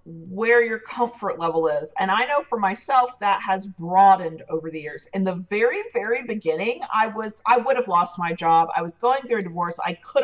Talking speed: 215 wpm